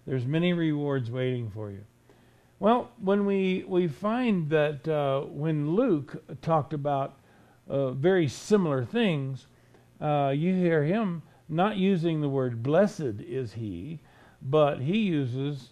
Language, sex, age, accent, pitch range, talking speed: English, male, 50-69, American, 125-160 Hz, 135 wpm